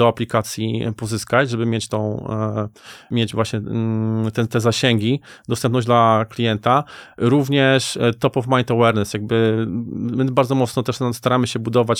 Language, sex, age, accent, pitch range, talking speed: Polish, male, 20-39, native, 115-130 Hz, 135 wpm